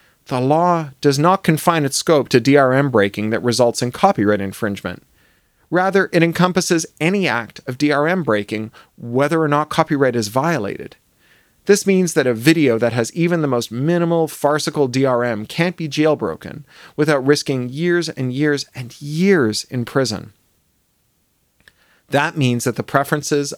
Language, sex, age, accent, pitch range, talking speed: English, male, 40-59, American, 120-155 Hz, 150 wpm